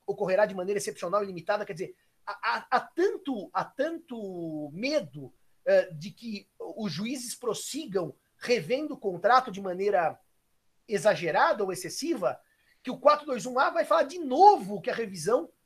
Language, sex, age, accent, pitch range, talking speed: Portuguese, male, 40-59, Brazilian, 190-270 Hz, 140 wpm